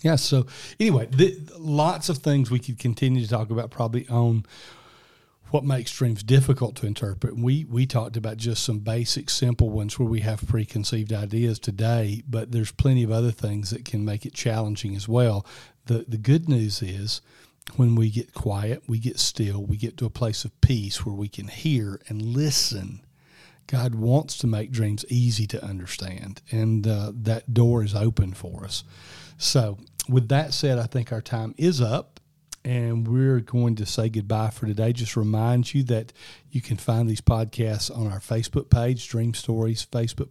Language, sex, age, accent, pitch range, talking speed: English, male, 40-59, American, 110-130 Hz, 185 wpm